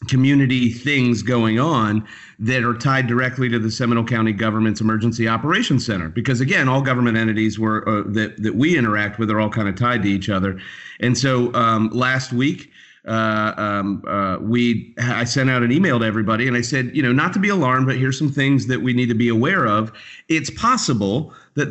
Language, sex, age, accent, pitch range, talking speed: English, male, 40-59, American, 110-135 Hz, 205 wpm